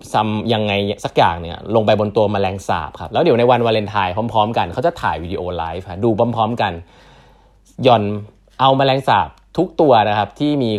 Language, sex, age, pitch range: Thai, male, 20-39, 95-125 Hz